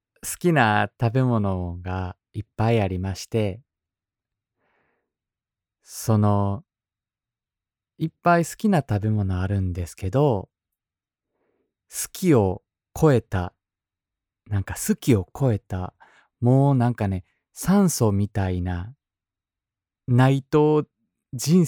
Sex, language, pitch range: male, Japanese, 95-120 Hz